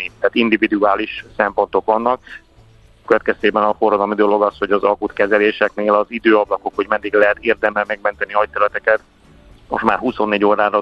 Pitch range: 100-110 Hz